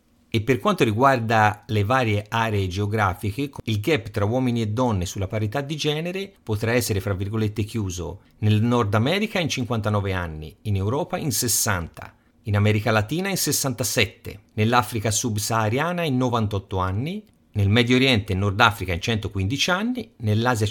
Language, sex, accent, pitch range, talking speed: Italian, male, native, 95-125 Hz, 155 wpm